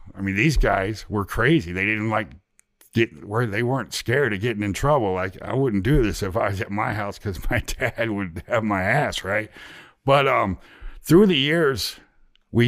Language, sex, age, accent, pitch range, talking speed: English, male, 60-79, American, 90-115 Hz, 205 wpm